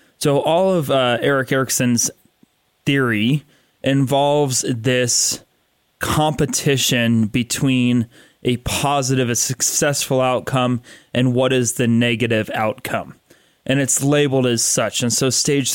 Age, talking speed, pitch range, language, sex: 20-39, 115 wpm, 120-140 Hz, English, male